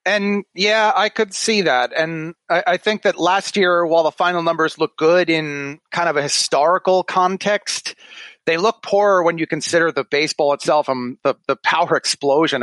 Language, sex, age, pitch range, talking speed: English, male, 30-49, 155-205 Hz, 190 wpm